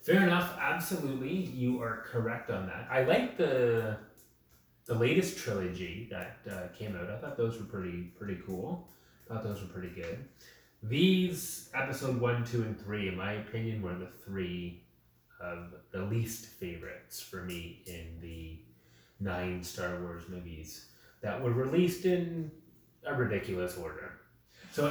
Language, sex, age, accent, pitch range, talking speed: English, male, 30-49, American, 95-125 Hz, 150 wpm